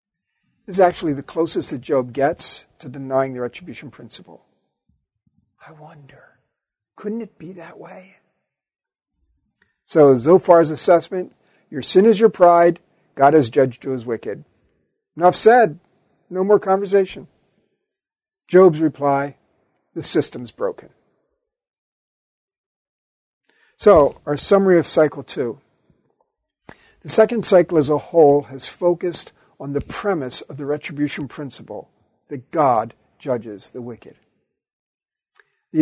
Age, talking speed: 50-69, 115 wpm